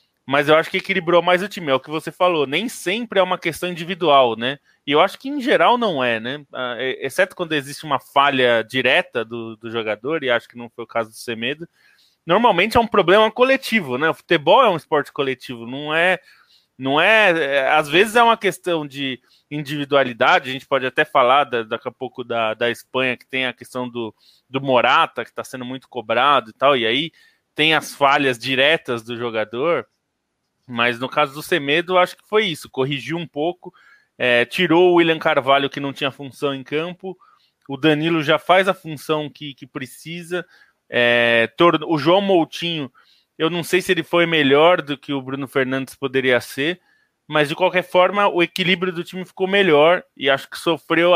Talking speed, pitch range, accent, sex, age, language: 190 wpm, 130-180 Hz, Brazilian, male, 20-39, Portuguese